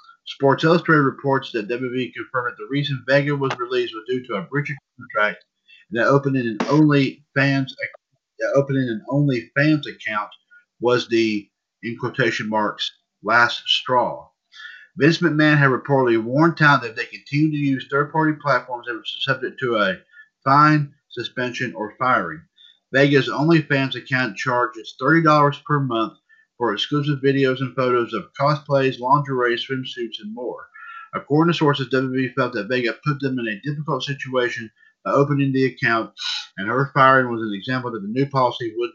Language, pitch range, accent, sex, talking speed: English, 120-150 Hz, American, male, 155 wpm